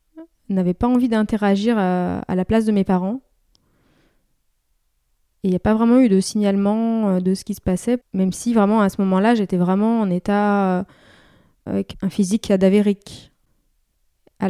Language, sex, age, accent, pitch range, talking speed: French, female, 20-39, French, 185-225 Hz, 160 wpm